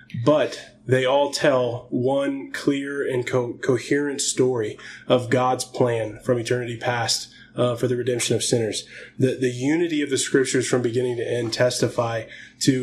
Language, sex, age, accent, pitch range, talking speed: English, male, 20-39, American, 120-130 Hz, 160 wpm